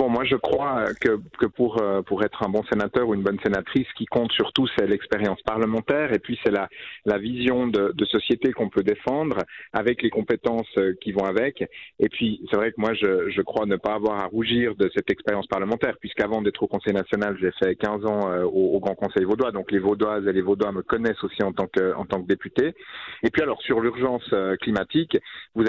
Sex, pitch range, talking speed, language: male, 105-120 Hz, 220 wpm, French